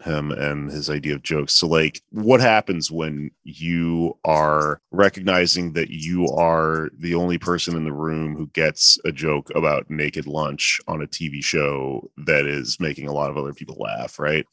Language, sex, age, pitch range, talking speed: English, male, 30-49, 75-90 Hz, 180 wpm